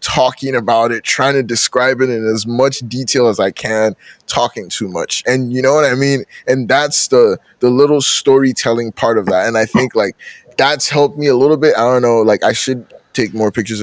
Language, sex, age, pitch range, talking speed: English, male, 20-39, 115-145 Hz, 220 wpm